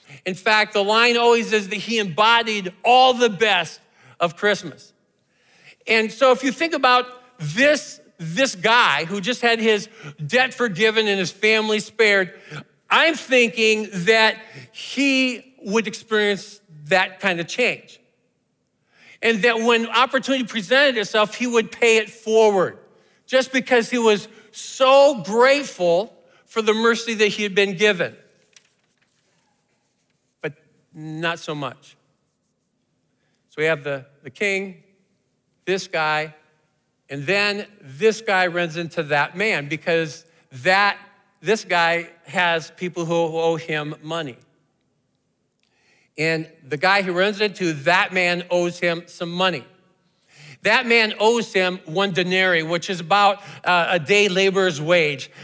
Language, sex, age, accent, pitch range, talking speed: English, male, 50-69, American, 170-225 Hz, 130 wpm